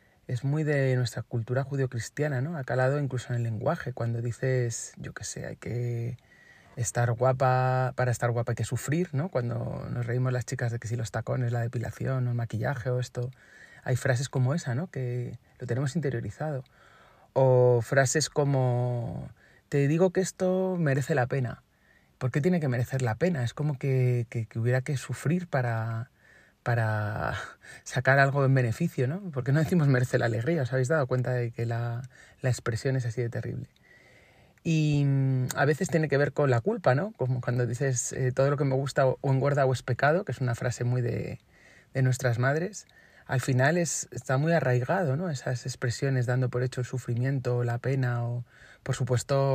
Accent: Spanish